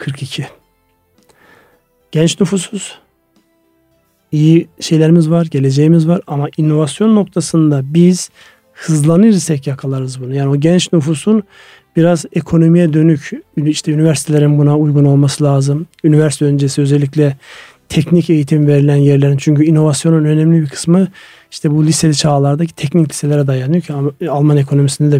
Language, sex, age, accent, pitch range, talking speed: Turkish, male, 40-59, native, 140-165 Hz, 120 wpm